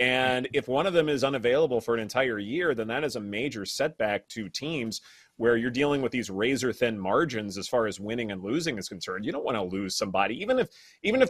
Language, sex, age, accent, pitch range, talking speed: English, male, 30-49, American, 110-150 Hz, 235 wpm